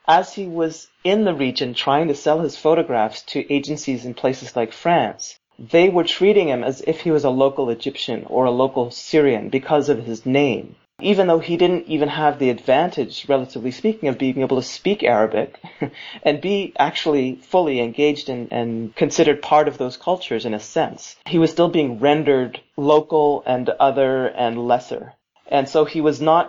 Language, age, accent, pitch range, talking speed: English, 30-49, American, 125-155 Hz, 185 wpm